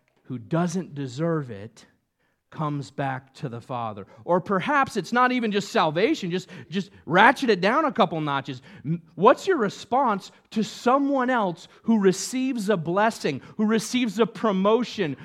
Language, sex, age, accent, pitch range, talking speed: English, male, 40-59, American, 130-215 Hz, 150 wpm